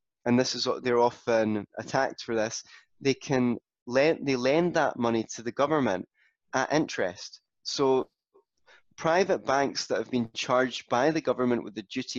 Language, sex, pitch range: English, male, 115-135 Hz